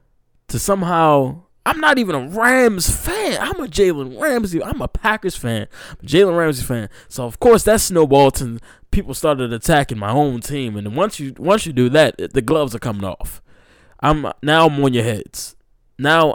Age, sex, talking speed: 20-39, male, 185 wpm